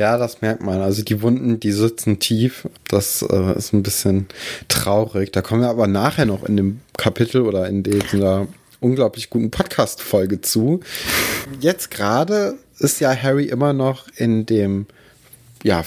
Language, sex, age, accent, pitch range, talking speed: German, male, 30-49, German, 105-130 Hz, 165 wpm